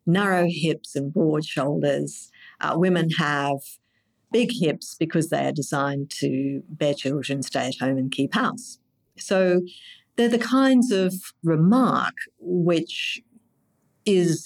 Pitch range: 160-235 Hz